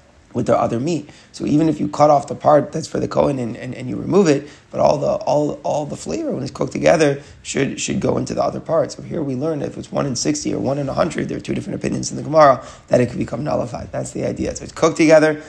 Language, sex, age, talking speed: English, male, 30-49, 285 wpm